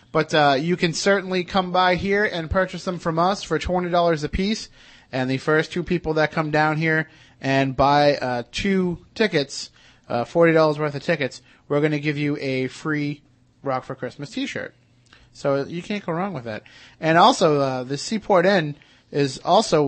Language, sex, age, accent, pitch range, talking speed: English, male, 30-49, American, 140-190 Hz, 185 wpm